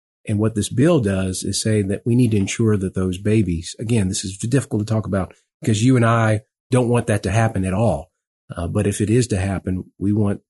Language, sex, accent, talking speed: English, male, American, 240 wpm